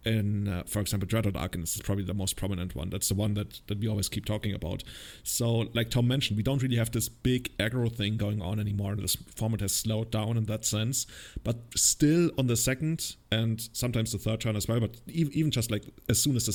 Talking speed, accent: 245 wpm, German